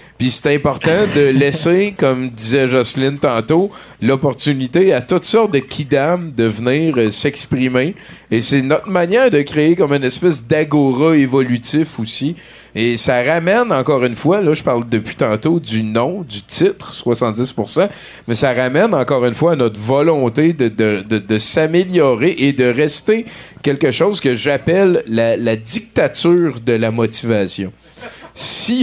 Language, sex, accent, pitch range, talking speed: French, male, Canadian, 120-160 Hz, 155 wpm